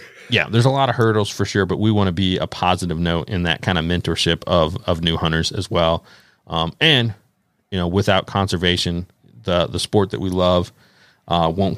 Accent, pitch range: American, 90-110 Hz